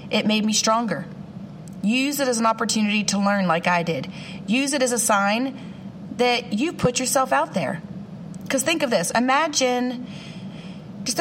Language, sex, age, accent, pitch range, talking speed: English, female, 30-49, American, 185-225 Hz, 165 wpm